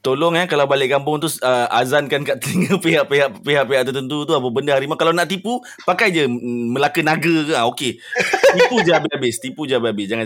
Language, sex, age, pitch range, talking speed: Malay, male, 20-39, 95-145 Hz, 205 wpm